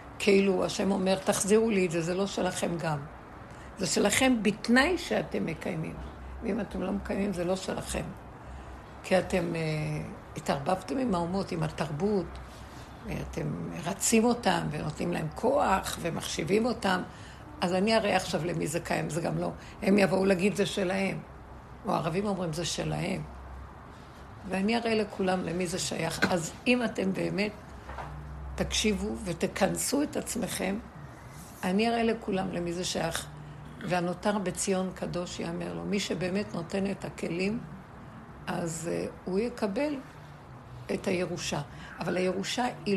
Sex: female